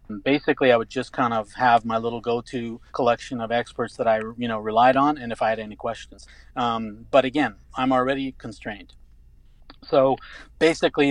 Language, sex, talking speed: English, male, 185 wpm